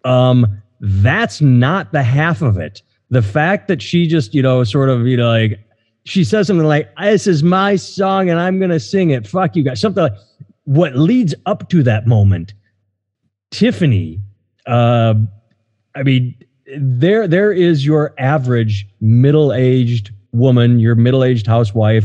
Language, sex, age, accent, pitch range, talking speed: English, male, 30-49, American, 115-150 Hz, 160 wpm